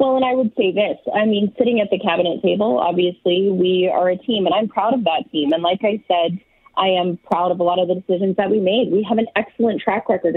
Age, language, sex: 30-49, English, female